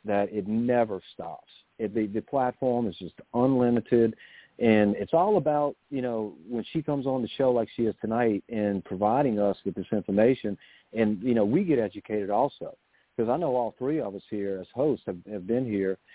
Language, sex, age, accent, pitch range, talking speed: English, male, 50-69, American, 100-115 Hz, 200 wpm